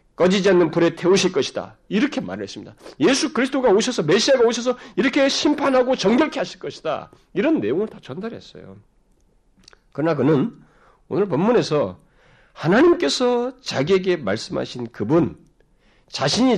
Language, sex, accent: Korean, male, native